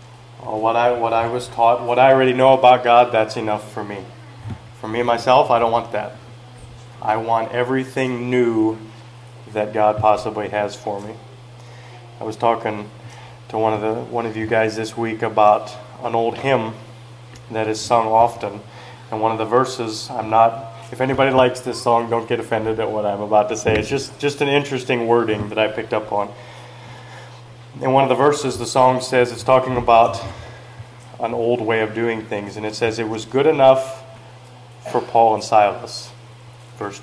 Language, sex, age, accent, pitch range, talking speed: English, male, 20-39, American, 115-125 Hz, 185 wpm